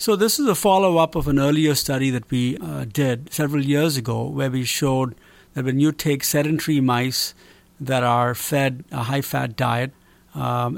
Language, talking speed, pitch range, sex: English, 180 wpm, 125-150 Hz, male